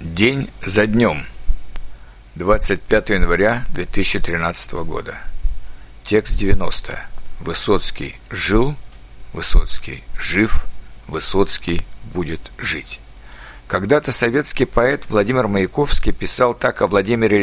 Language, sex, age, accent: Ukrainian, male, 60-79, native